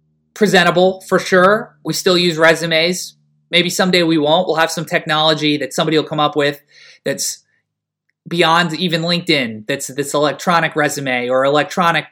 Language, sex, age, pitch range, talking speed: English, male, 20-39, 140-170 Hz, 155 wpm